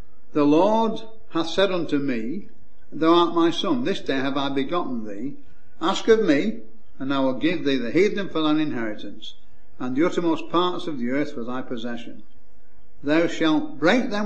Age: 60-79